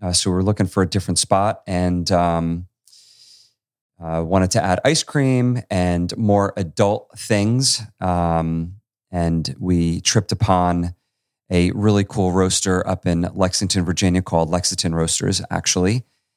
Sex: male